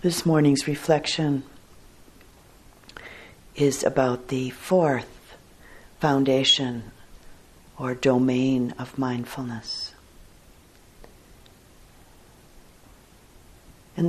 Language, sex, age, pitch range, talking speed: English, female, 50-69, 120-150 Hz, 55 wpm